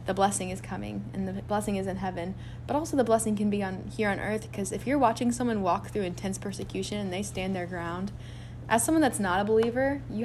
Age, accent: 20-39, American